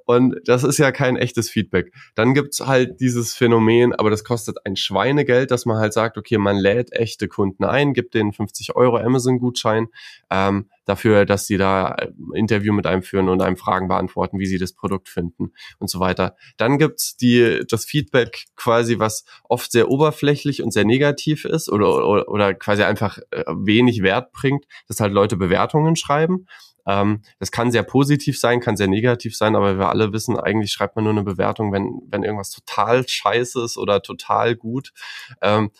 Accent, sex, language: German, male, German